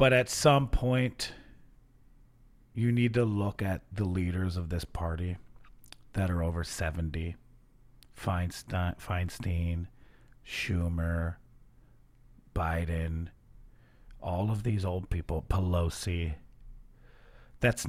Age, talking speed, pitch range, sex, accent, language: 40-59, 95 wpm, 90-125 Hz, male, American, English